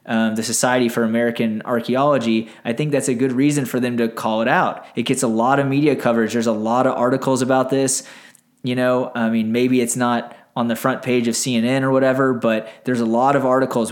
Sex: male